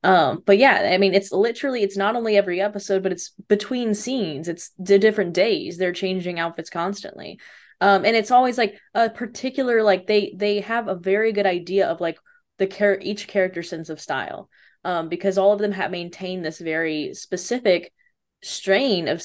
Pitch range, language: 175-225 Hz, English